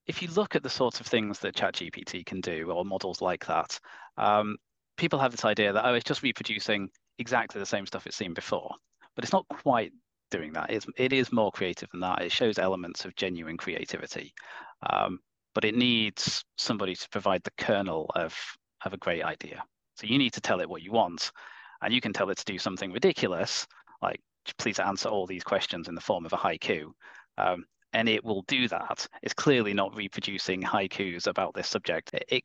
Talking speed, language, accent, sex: 200 wpm, English, British, male